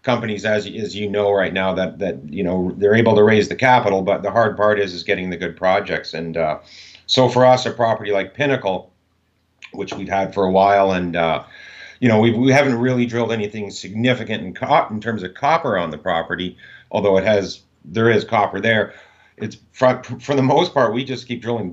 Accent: American